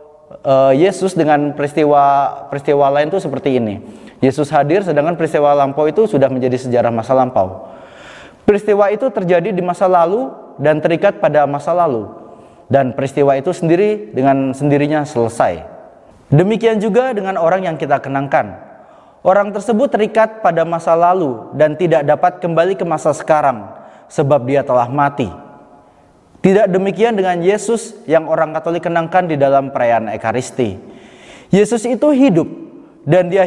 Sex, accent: male, native